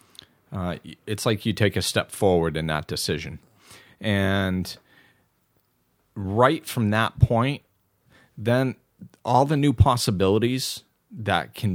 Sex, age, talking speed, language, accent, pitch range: male, 40-59, 115 wpm, English, American, 95-120 Hz